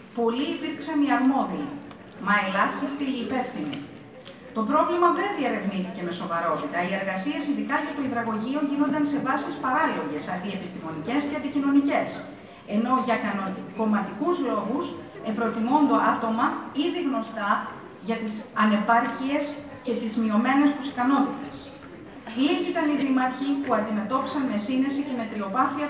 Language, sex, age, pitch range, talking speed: Greek, female, 50-69, 215-280 Hz, 125 wpm